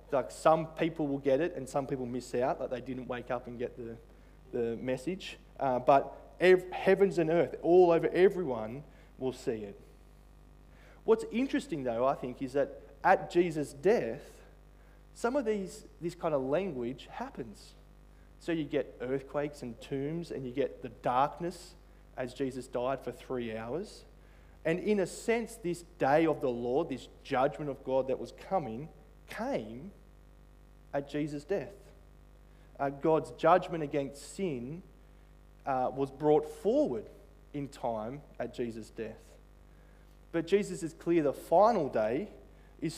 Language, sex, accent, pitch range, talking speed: English, male, Australian, 125-165 Hz, 155 wpm